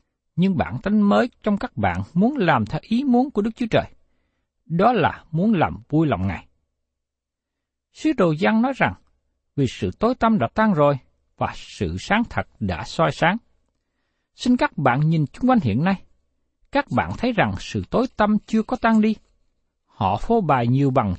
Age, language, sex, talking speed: 60-79, Vietnamese, male, 185 wpm